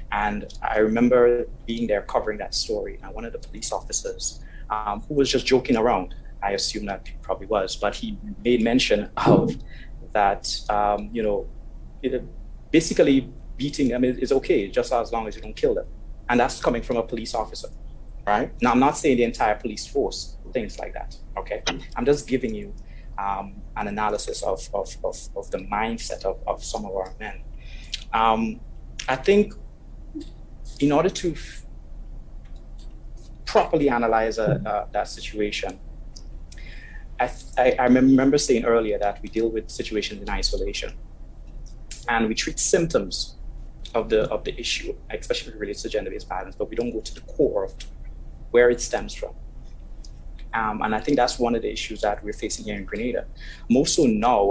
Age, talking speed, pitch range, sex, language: 30-49, 170 wpm, 100-150 Hz, male, English